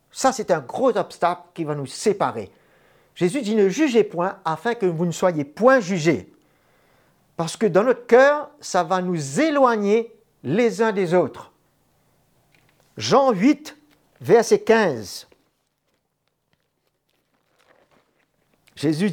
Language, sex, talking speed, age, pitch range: French, male, 130 wpm, 50-69, 155-250 Hz